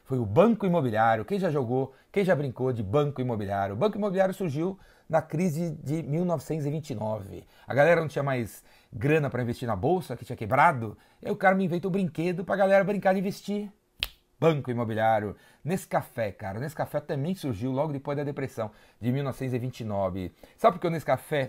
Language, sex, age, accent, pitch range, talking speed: Portuguese, male, 40-59, Brazilian, 125-175 Hz, 195 wpm